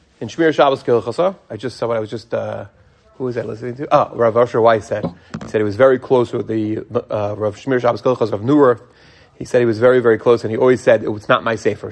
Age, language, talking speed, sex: 30-49, English, 265 wpm, male